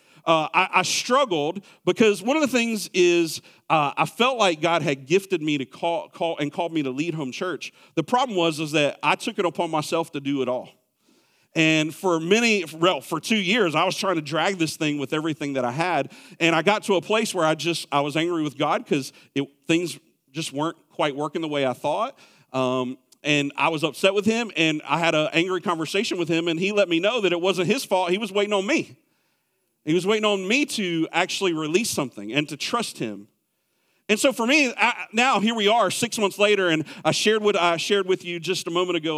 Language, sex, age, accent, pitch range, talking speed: English, male, 40-59, American, 155-200 Hz, 235 wpm